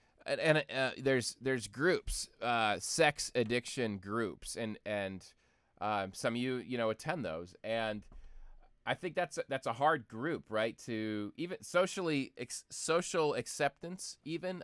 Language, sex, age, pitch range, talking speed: English, male, 20-39, 105-135 Hz, 145 wpm